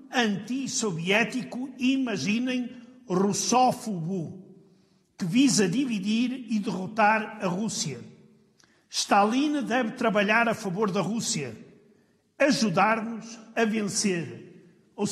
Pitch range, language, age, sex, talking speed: 185-235 Hz, Portuguese, 50-69, male, 85 wpm